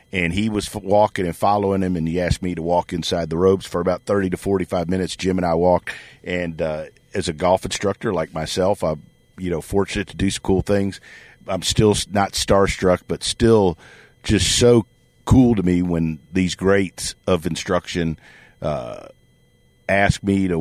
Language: English